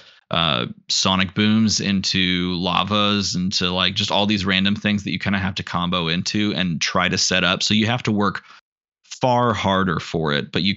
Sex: male